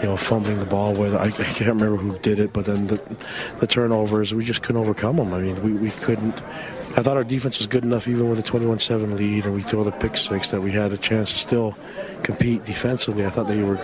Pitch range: 100-115 Hz